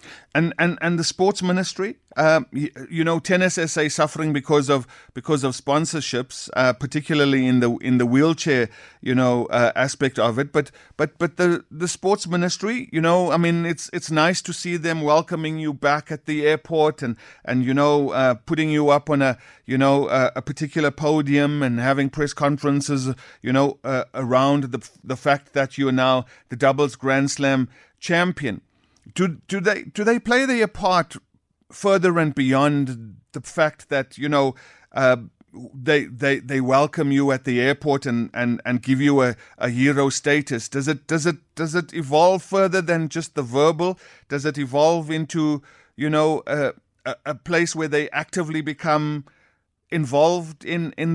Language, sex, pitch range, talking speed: English, male, 135-165 Hz, 180 wpm